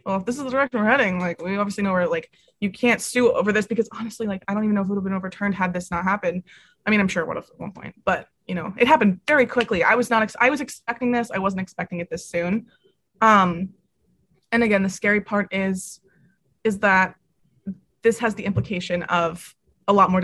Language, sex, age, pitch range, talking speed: English, female, 20-39, 185-220 Hz, 245 wpm